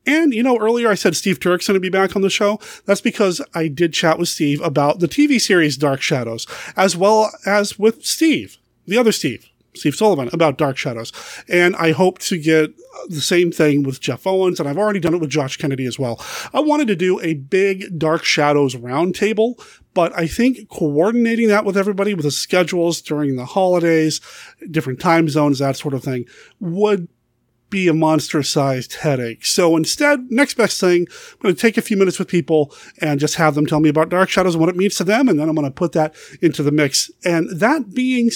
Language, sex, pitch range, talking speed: English, male, 150-205 Hz, 215 wpm